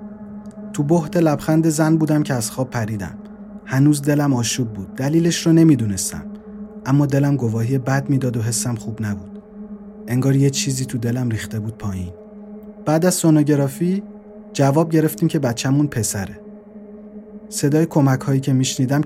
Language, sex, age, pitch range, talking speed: Persian, male, 30-49, 120-165 Hz, 140 wpm